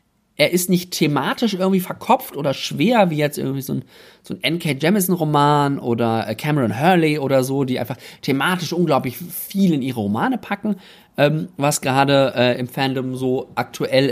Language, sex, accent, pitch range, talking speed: German, male, German, 130-180 Hz, 165 wpm